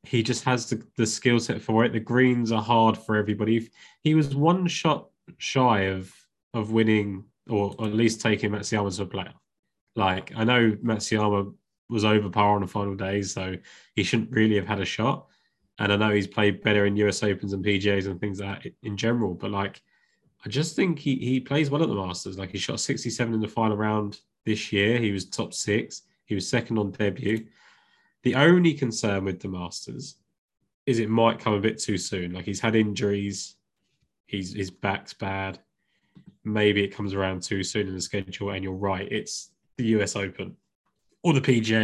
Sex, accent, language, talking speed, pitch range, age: male, British, English, 200 wpm, 100-120 Hz, 20-39